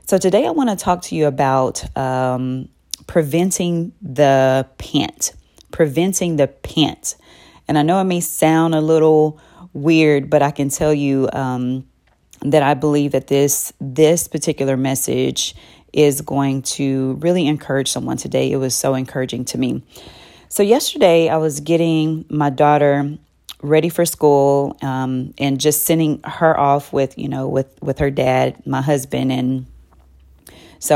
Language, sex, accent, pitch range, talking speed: English, female, American, 135-170 Hz, 155 wpm